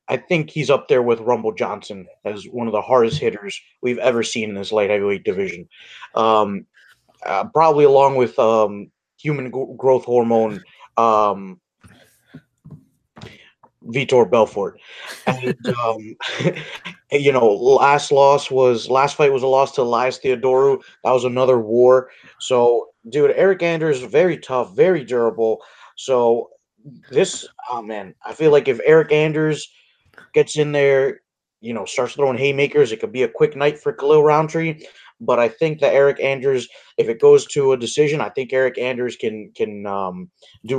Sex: male